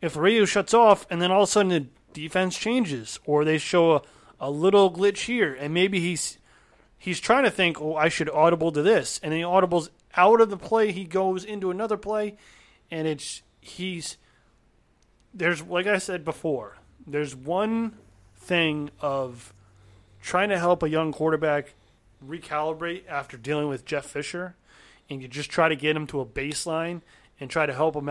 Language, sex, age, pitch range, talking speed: English, male, 30-49, 145-185 Hz, 190 wpm